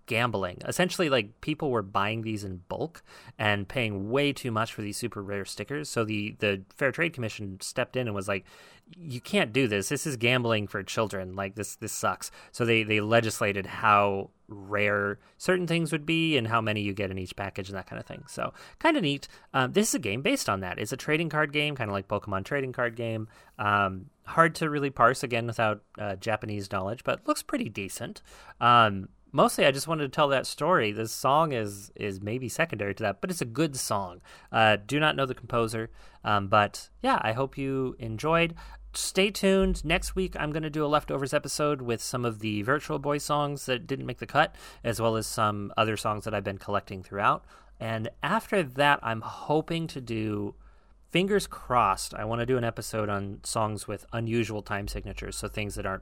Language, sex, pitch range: English, male, 105-145 Hz